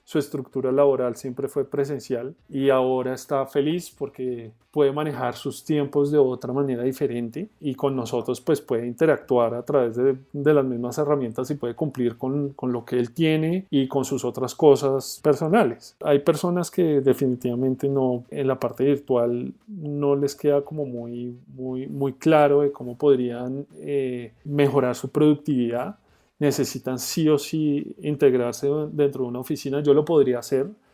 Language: Spanish